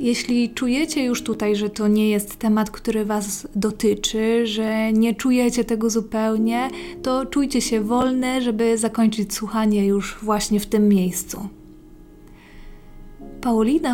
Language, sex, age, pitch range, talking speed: Polish, female, 20-39, 210-240 Hz, 130 wpm